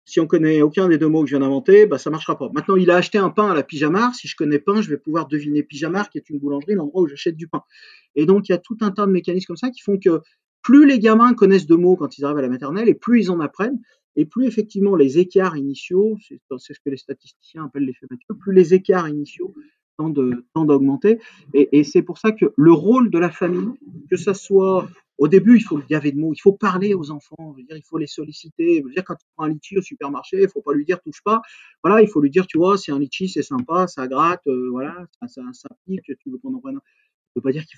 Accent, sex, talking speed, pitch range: French, male, 280 wpm, 145-205 Hz